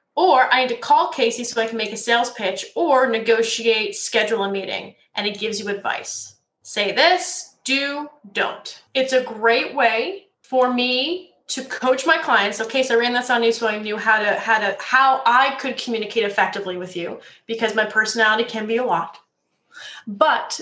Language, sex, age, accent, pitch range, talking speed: English, female, 20-39, American, 220-270 Hz, 195 wpm